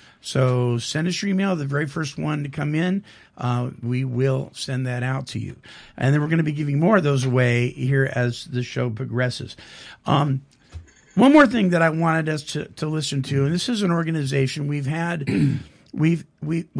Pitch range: 130-165 Hz